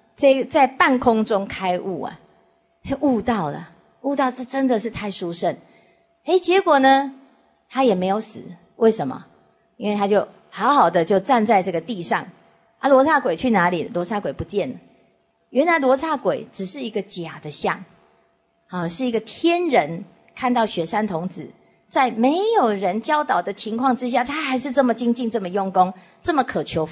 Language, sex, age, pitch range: English, female, 30-49, 180-270 Hz